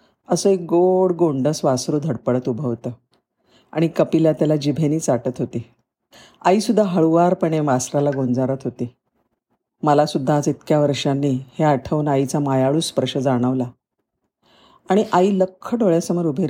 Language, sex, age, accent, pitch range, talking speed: Marathi, female, 50-69, native, 130-175 Hz, 125 wpm